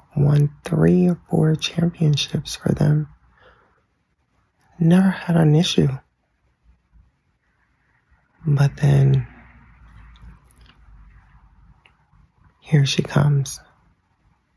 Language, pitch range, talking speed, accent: English, 130-165 Hz, 65 wpm, American